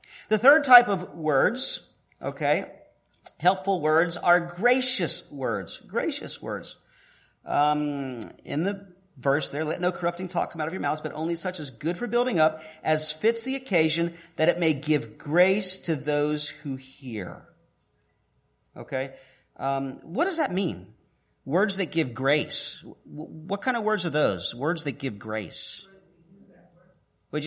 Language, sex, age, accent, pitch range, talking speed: English, male, 40-59, American, 160-220 Hz, 155 wpm